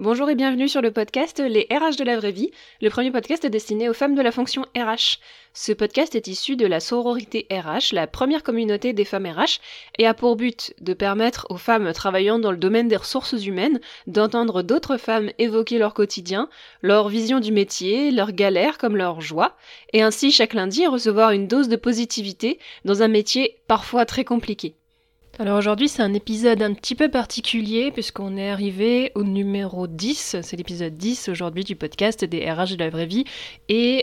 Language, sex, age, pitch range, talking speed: French, female, 20-39, 180-235 Hz, 190 wpm